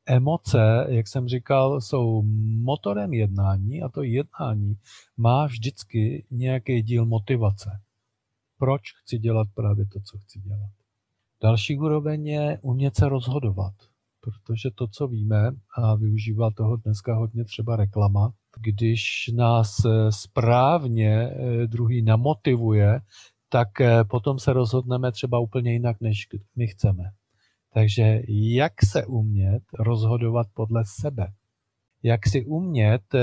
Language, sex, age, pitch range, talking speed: Czech, male, 40-59, 110-130 Hz, 115 wpm